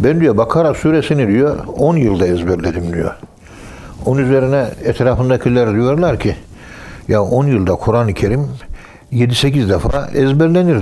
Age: 60-79